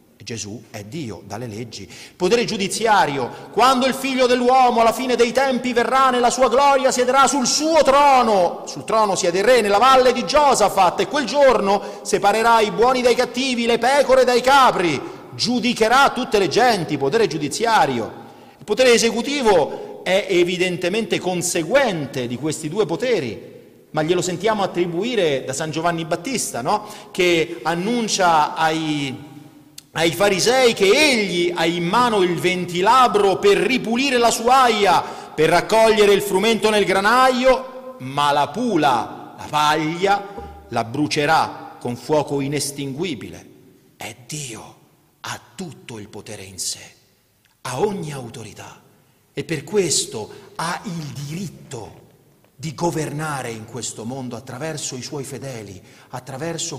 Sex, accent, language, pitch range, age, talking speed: male, native, Italian, 145-240 Hz, 40-59, 135 wpm